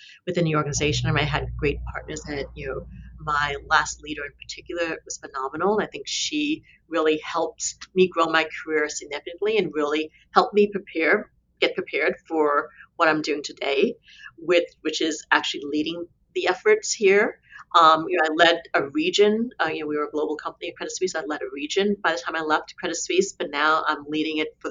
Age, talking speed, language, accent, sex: 40-59, 210 wpm, English, American, female